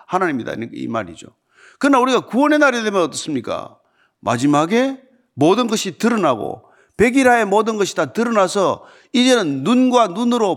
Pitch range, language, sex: 175-255 Hz, Korean, male